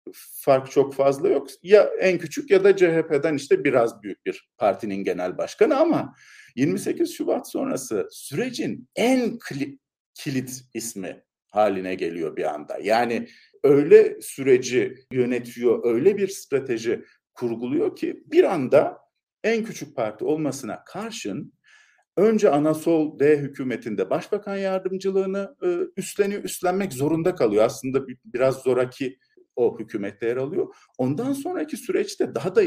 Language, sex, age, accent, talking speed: Turkish, male, 50-69, native, 125 wpm